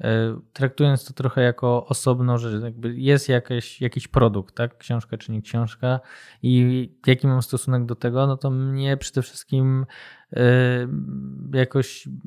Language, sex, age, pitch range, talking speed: Polish, male, 20-39, 125-140 Hz, 135 wpm